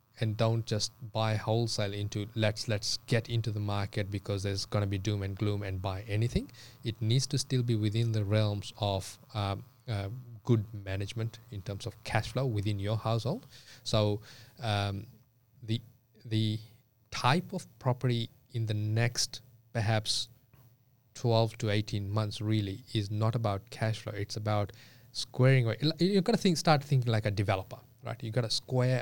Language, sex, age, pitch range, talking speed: English, male, 20-39, 105-125 Hz, 170 wpm